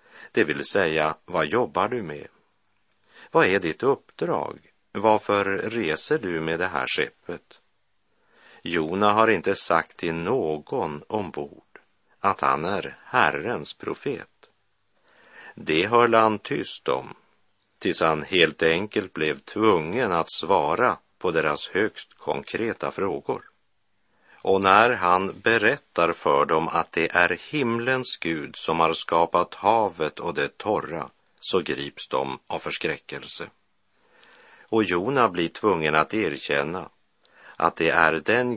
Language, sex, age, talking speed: Swedish, male, 50-69, 125 wpm